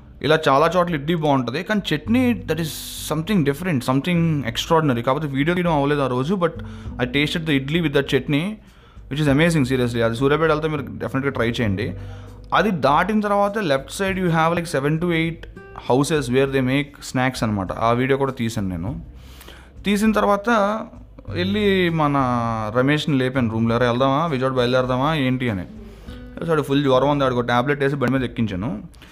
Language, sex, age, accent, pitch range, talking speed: Telugu, male, 20-39, native, 120-160 Hz, 170 wpm